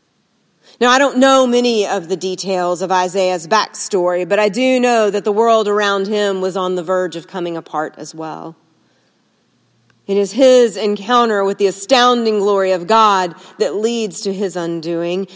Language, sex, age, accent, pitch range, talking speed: English, female, 40-59, American, 185-235 Hz, 170 wpm